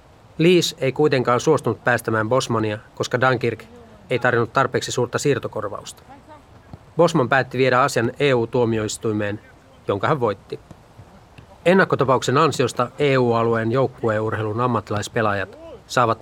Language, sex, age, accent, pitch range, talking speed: Finnish, male, 30-49, native, 110-130 Hz, 100 wpm